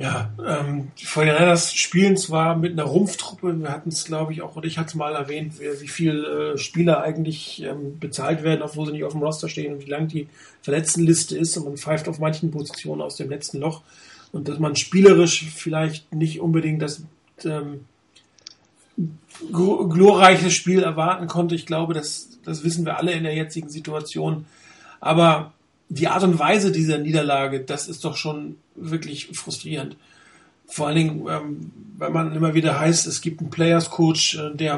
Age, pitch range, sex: 40-59, 150-170 Hz, male